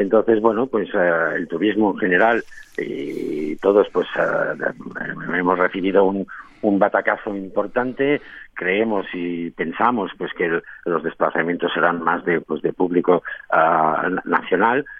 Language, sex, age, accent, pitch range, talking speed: Spanish, male, 50-69, Spanish, 90-115 Hz, 135 wpm